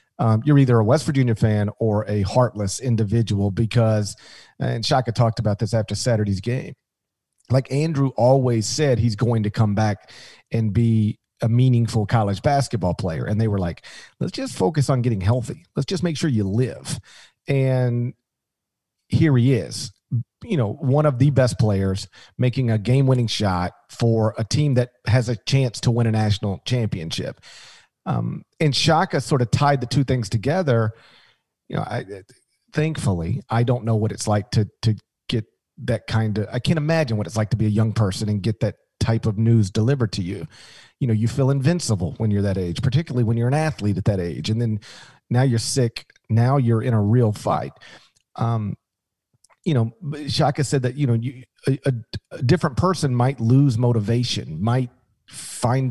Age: 40-59